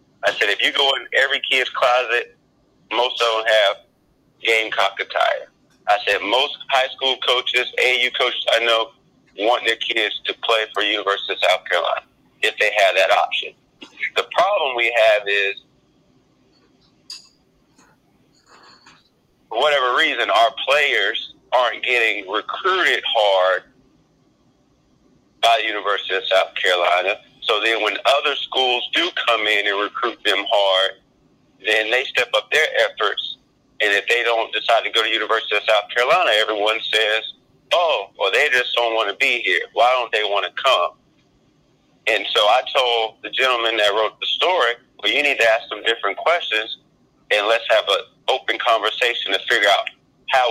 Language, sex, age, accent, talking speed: English, male, 40-59, American, 165 wpm